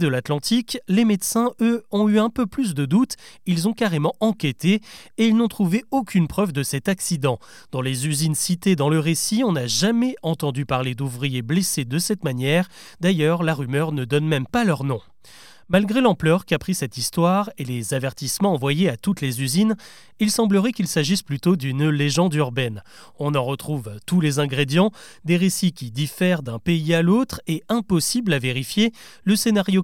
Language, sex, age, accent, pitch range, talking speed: French, male, 30-49, French, 140-205 Hz, 185 wpm